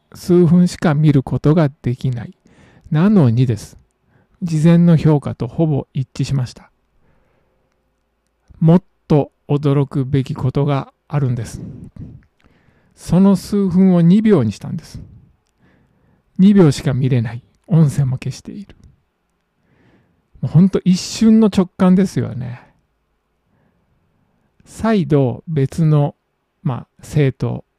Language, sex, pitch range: Japanese, male, 135-180 Hz